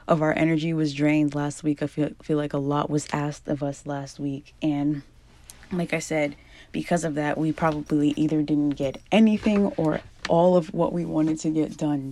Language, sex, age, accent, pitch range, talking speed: English, female, 20-39, American, 150-185 Hz, 205 wpm